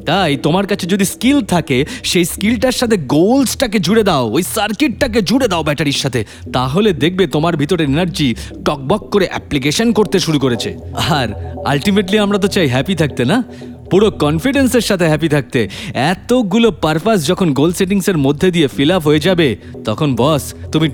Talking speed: 160 wpm